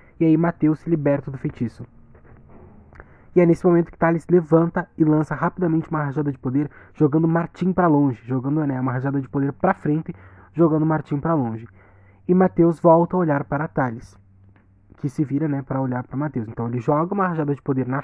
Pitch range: 135-170 Hz